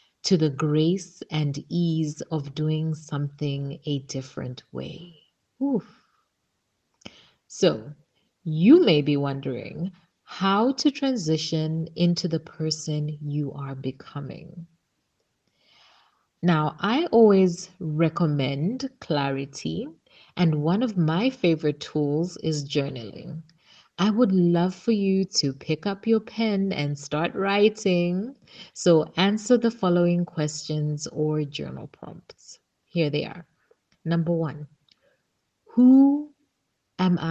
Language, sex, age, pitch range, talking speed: English, female, 30-49, 150-185 Hz, 105 wpm